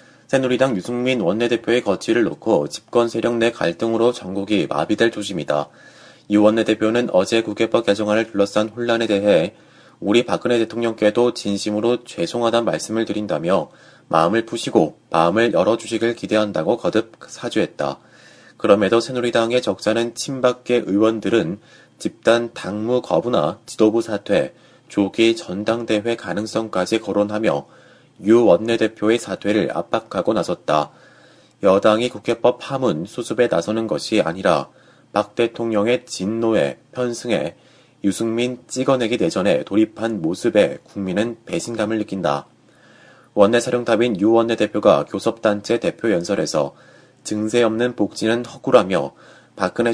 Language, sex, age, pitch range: Korean, male, 30-49, 105-120 Hz